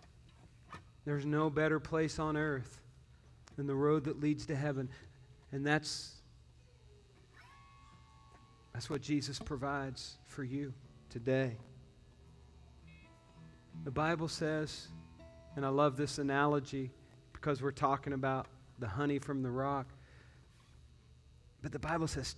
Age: 40-59